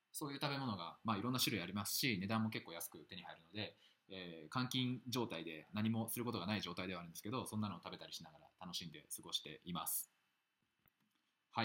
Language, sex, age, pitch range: Japanese, male, 20-39, 90-130 Hz